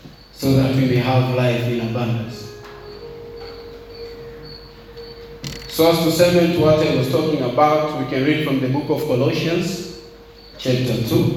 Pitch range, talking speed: 130-170 Hz, 145 wpm